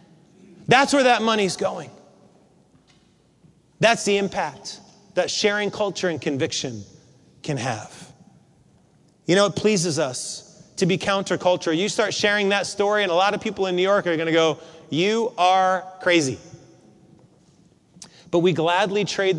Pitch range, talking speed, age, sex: 165-220 Hz, 145 wpm, 30-49, male